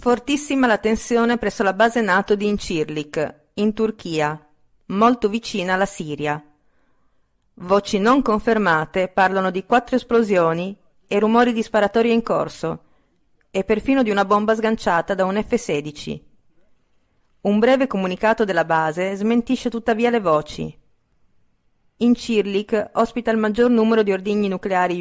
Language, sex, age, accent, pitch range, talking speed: Italian, female, 40-59, native, 175-225 Hz, 130 wpm